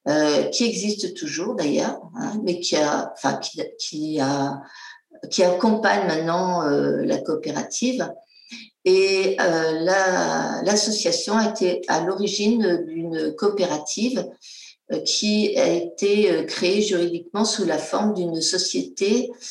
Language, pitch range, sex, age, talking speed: English, 160-210 Hz, female, 50-69, 115 wpm